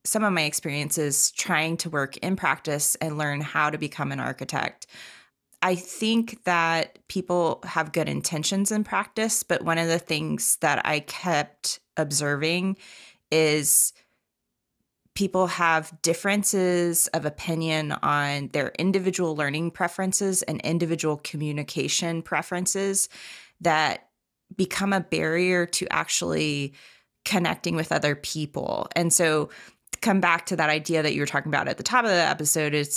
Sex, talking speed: female, 140 wpm